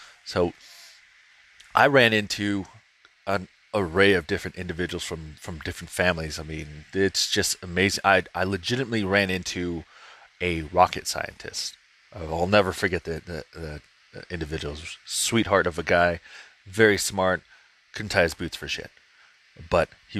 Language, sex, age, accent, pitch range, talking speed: English, male, 30-49, American, 80-105 Hz, 140 wpm